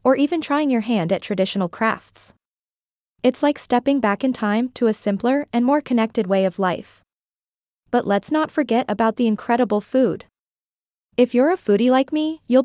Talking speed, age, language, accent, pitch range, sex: 180 wpm, 20-39, English, American, 205-260 Hz, female